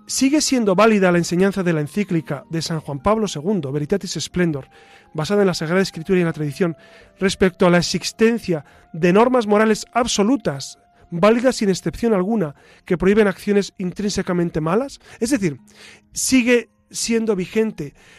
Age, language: 40-59, Spanish